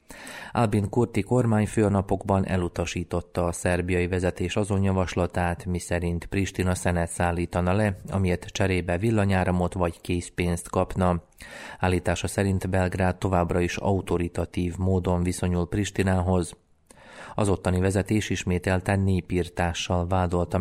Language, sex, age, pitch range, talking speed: Hungarian, male, 30-49, 90-95 Hz, 105 wpm